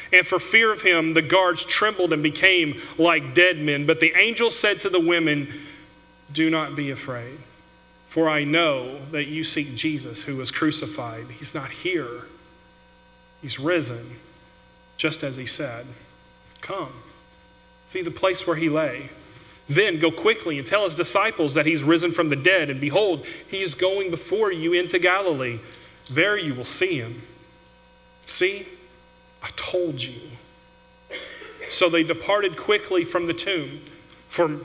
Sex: male